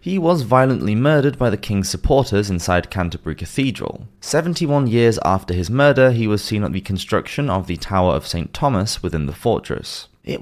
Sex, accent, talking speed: male, British, 185 wpm